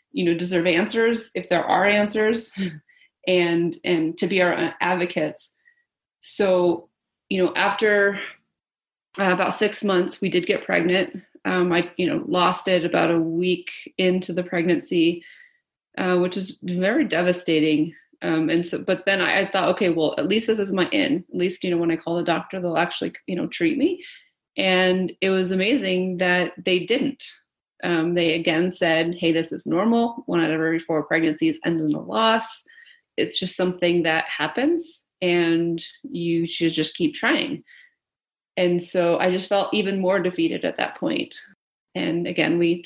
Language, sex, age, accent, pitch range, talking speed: English, female, 30-49, American, 170-210 Hz, 175 wpm